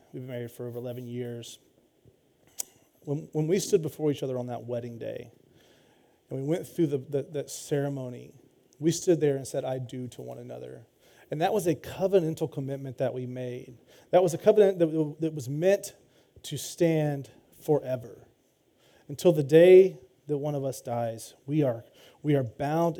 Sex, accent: male, American